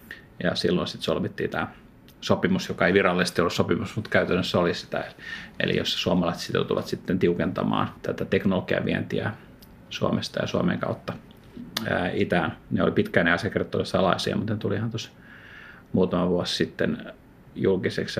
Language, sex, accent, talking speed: Finnish, male, native, 145 wpm